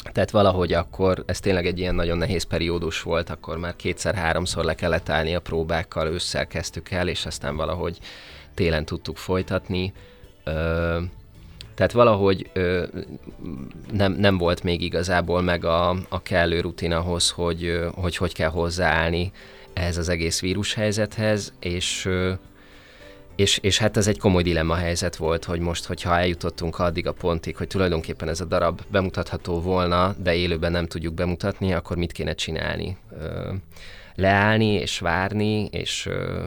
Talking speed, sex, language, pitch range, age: 145 wpm, male, Hungarian, 85-100 Hz, 20-39